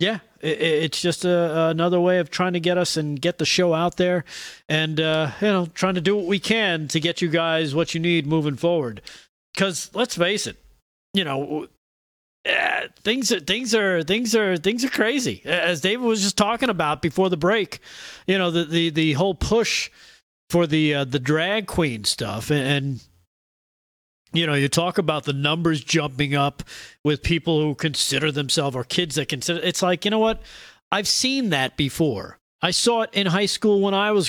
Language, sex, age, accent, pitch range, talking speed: English, male, 40-59, American, 150-190 Hz, 195 wpm